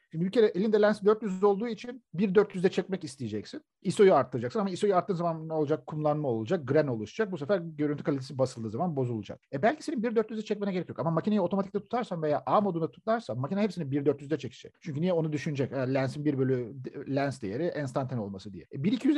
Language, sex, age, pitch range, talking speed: Turkish, male, 50-69, 130-200 Hz, 195 wpm